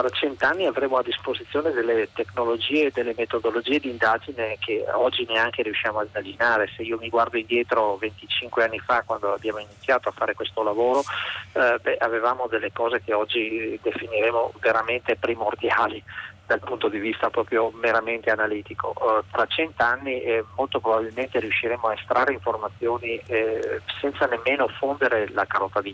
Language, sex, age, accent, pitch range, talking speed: Italian, male, 30-49, native, 110-140 Hz, 155 wpm